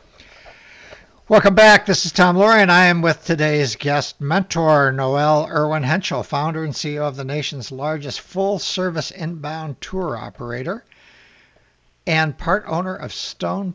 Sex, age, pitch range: male, 60-79, 135-175 Hz